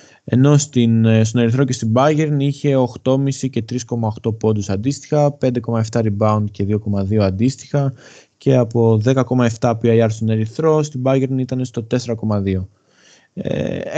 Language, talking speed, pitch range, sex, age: Greek, 125 wpm, 115-130 Hz, male, 20-39